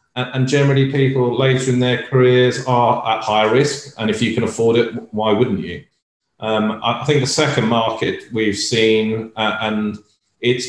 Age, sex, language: 30-49, male, English